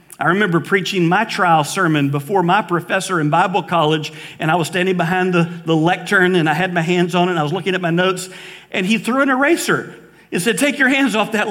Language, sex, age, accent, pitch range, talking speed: English, male, 50-69, American, 165-190 Hz, 240 wpm